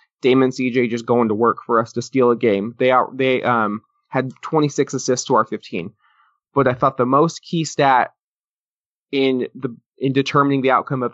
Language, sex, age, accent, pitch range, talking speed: English, male, 20-39, American, 120-140 Hz, 195 wpm